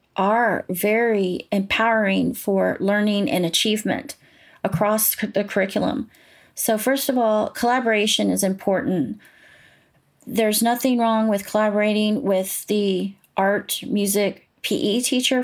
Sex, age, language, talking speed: female, 30-49, English, 110 wpm